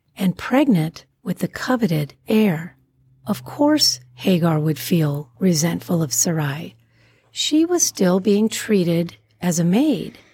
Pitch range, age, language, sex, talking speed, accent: 170-225 Hz, 40-59, English, female, 130 wpm, American